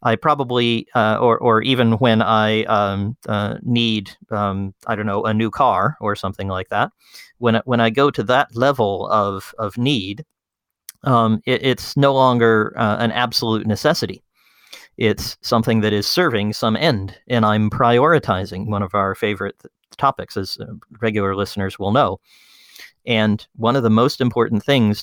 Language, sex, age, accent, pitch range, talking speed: English, male, 40-59, American, 95-115 Hz, 165 wpm